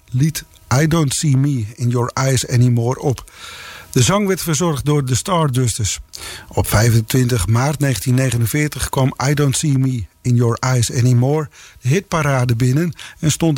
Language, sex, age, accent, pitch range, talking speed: English, male, 50-69, Dutch, 120-150 Hz, 155 wpm